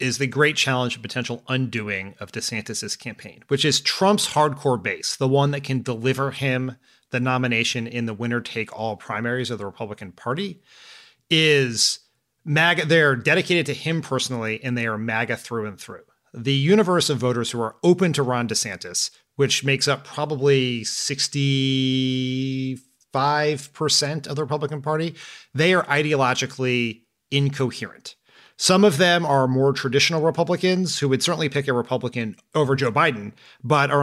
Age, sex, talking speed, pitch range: 30-49, male, 150 wpm, 125-155 Hz